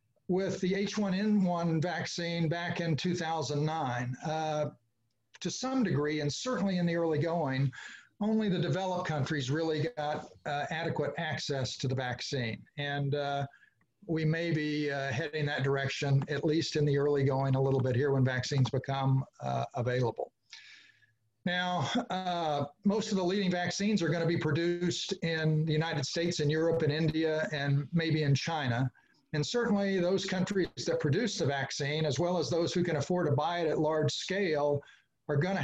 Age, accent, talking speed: 50-69, American, 165 wpm